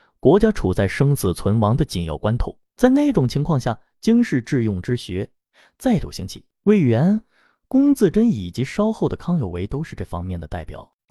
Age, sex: 30-49, male